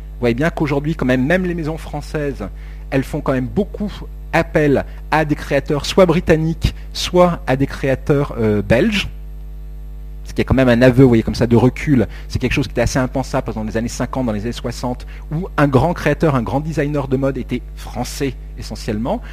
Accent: French